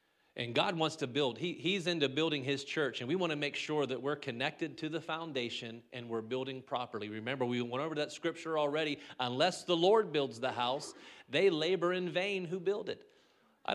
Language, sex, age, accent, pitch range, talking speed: English, male, 40-59, American, 125-160 Hz, 210 wpm